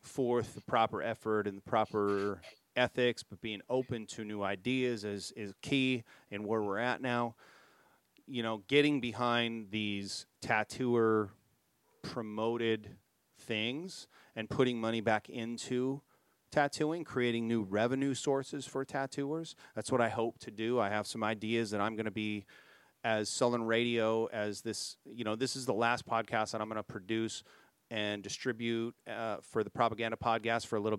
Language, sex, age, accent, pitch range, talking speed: English, male, 30-49, American, 105-125 Hz, 165 wpm